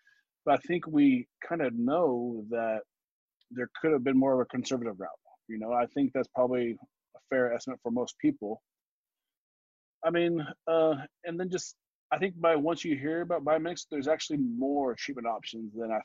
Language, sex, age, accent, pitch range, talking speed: English, male, 20-39, American, 120-160 Hz, 185 wpm